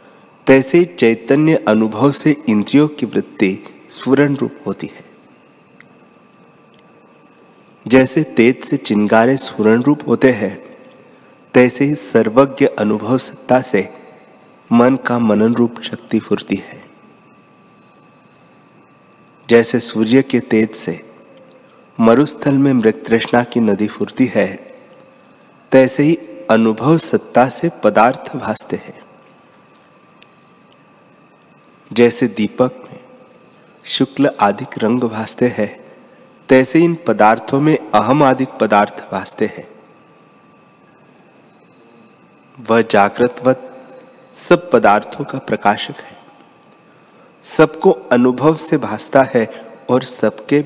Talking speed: 100 wpm